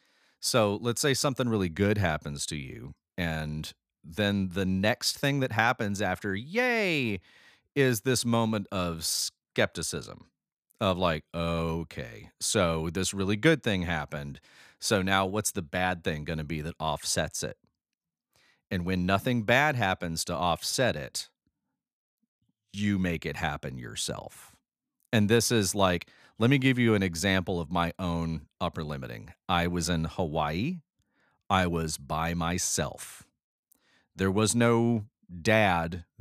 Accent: American